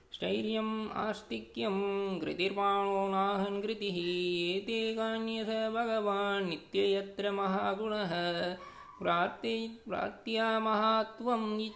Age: 20-39